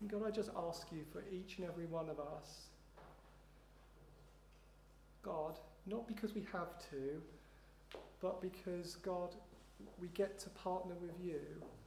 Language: English